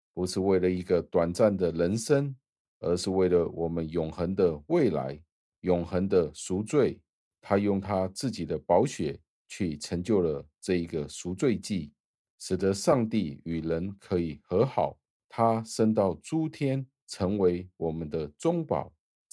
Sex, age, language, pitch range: male, 50-69, Chinese, 80-100 Hz